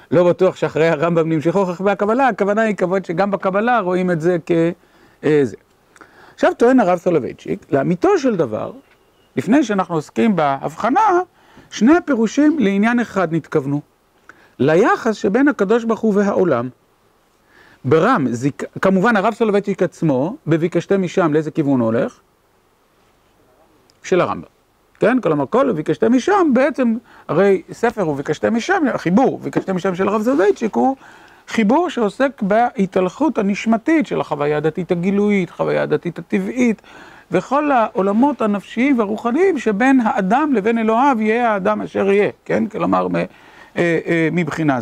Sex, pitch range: male, 170-240 Hz